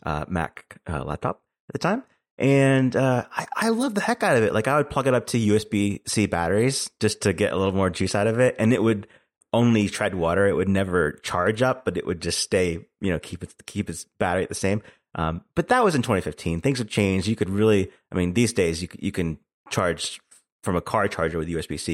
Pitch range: 90-120 Hz